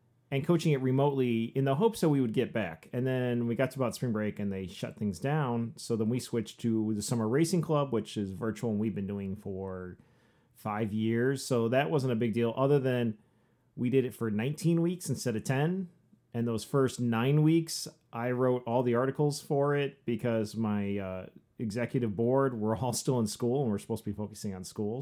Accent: American